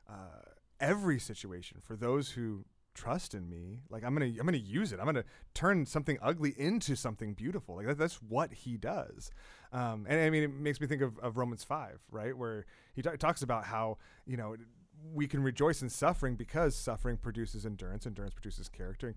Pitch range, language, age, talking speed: 110-145 Hz, English, 30-49, 200 wpm